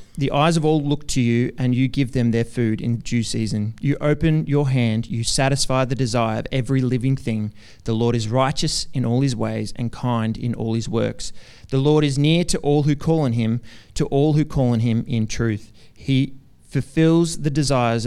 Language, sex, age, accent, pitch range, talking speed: English, male, 30-49, Australian, 115-145 Hz, 215 wpm